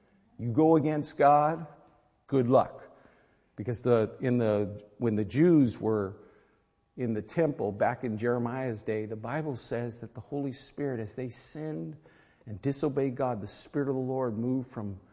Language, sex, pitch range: English, male, 105-135 Hz